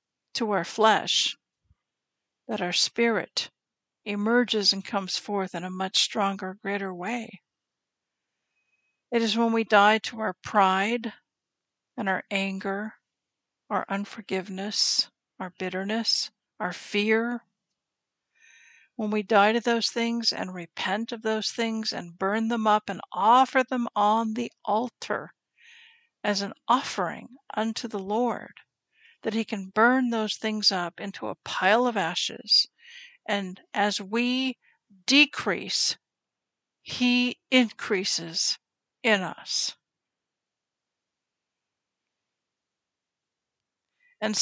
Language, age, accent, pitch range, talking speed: English, 60-79, American, 205-240 Hz, 110 wpm